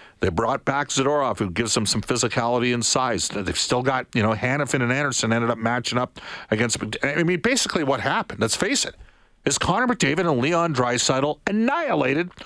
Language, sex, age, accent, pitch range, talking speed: English, male, 50-69, American, 115-180 Hz, 190 wpm